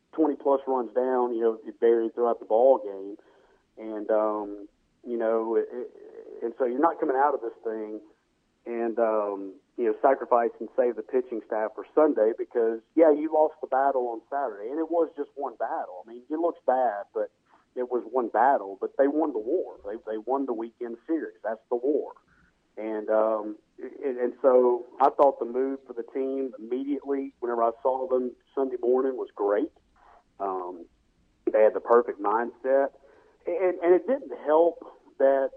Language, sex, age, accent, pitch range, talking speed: English, male, 40-59, American, 120-155 Hz, 180 wpm